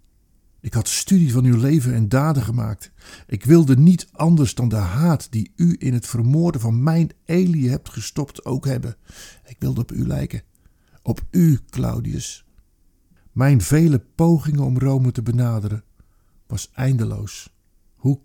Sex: male